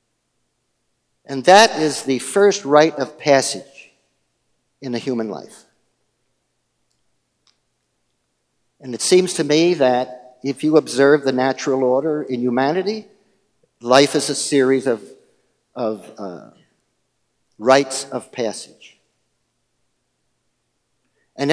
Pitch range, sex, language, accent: 125-155 Hz, male, English, American